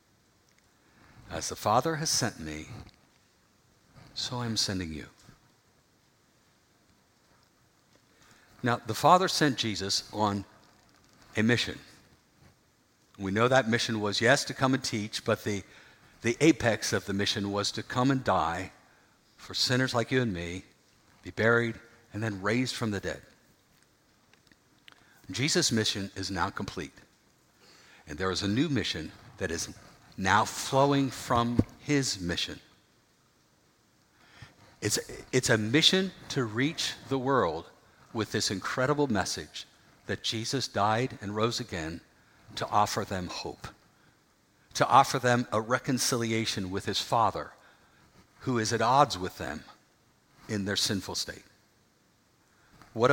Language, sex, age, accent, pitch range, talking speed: English, male, 60-79, American, 100-130 Hz, 130 wpm